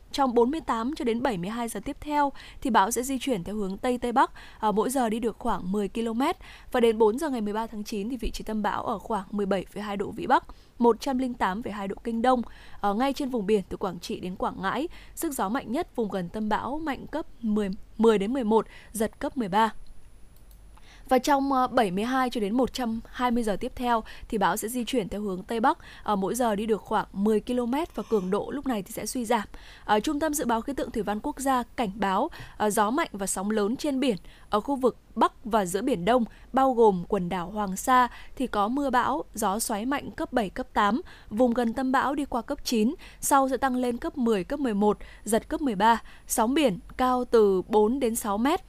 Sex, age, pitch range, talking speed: female, 10-29, 210-260 Hz, 220 wpm